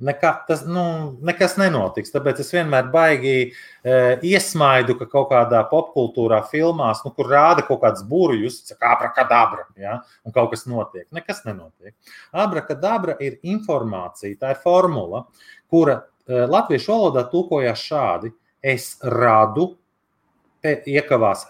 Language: English